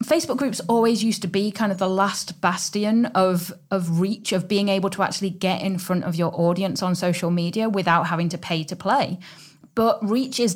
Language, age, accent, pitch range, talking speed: English, 30-49, British, 190-230 Hz, 205 wpm